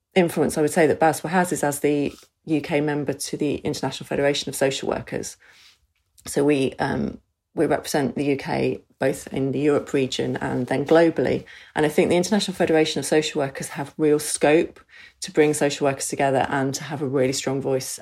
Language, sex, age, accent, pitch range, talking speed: English, female, 30-49, British, 135-155 Hz, 195 wpm